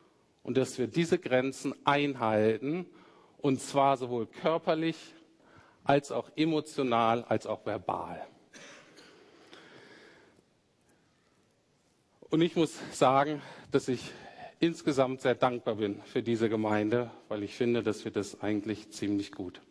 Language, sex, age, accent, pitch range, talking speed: German, male, 50-69, German, 120-165 Hz, 115 wpm